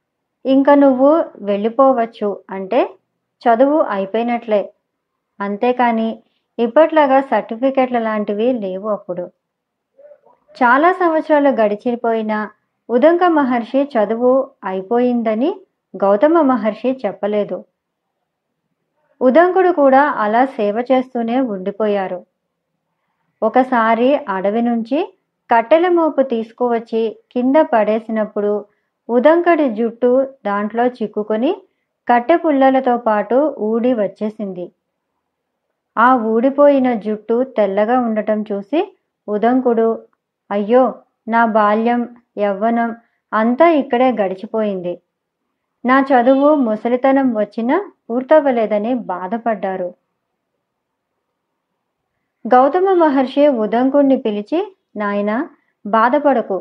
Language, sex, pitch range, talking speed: Telugu, male, 210-270 Hz, 75 wpm